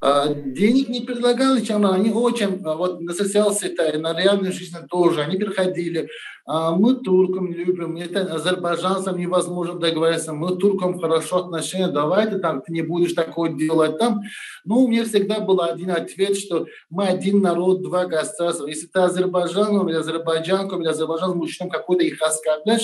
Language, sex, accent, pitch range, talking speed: Russian, male, native, 170-205 Hz, 150 wpm